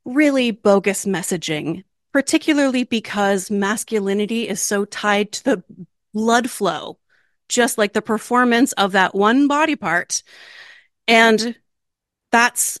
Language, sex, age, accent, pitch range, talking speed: English, female, 30-49, American, 205-275 Hz, 115 wpm